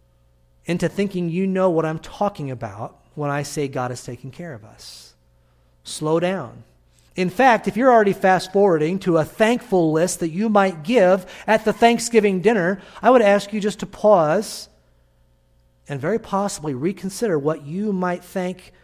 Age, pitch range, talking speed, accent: 40-59, 130-190 Hz, 165 wpm, American